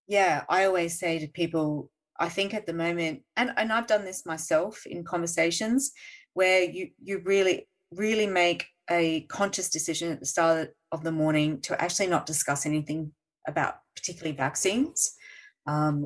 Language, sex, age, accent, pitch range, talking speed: English, female, 30-49, Australian, 155-195 Hz, 160 wpm